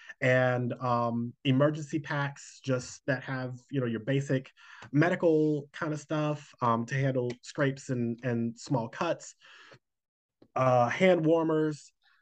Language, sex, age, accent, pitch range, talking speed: English, male, 30-49, American, 120-150 Hz, 130 wpm